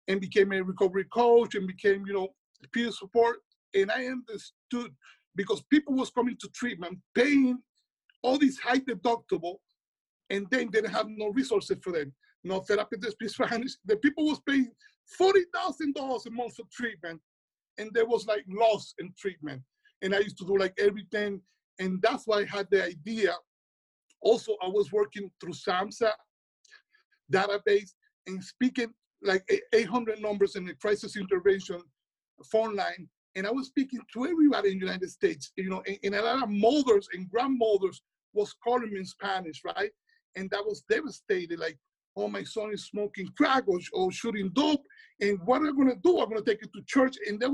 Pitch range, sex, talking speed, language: 195-265 Hz, male, 175 wpm, English